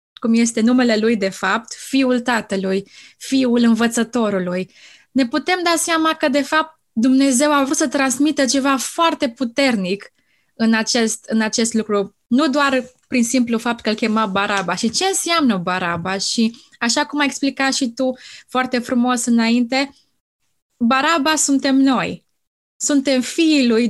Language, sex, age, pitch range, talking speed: Romanian, female, 20-39, 220-270 Hz, 145 wpm